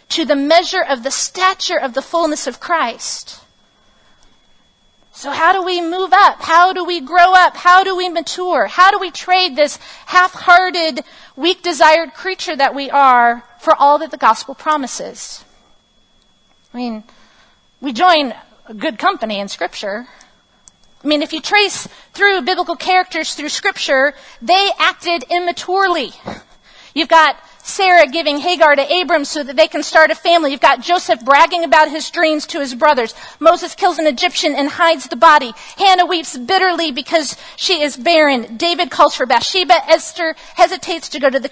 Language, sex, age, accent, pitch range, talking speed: English, female, 40-59, American, 285-355 Hz, 165 wpm